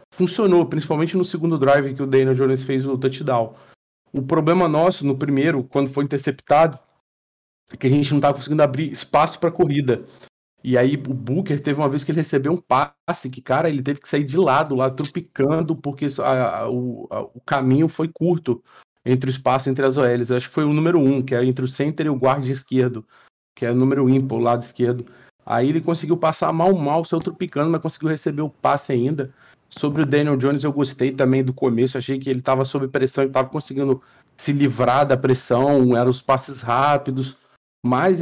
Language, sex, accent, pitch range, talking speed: Portuguese, male, Brazilian, 125-150 Hz, 210 wpm